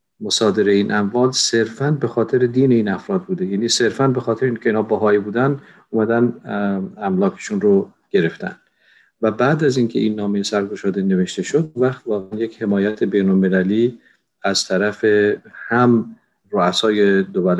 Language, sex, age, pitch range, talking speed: Persian, male, 50-69, 95-120 Hz, 140 wpm